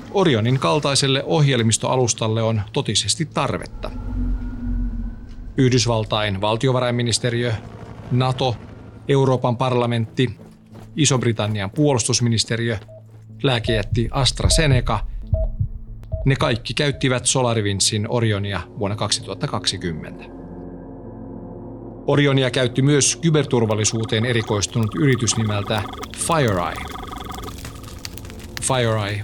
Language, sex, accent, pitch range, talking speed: Finnish, male, native, 105-130 Hz, 65 wpm